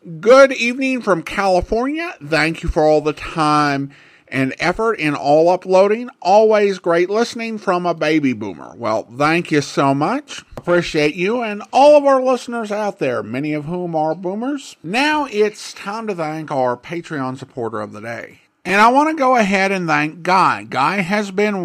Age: 50-69